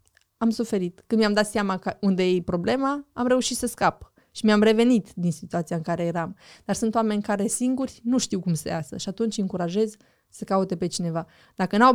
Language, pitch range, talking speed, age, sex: Romanian, 180-220 Hz, 200 wpm, 20-39, female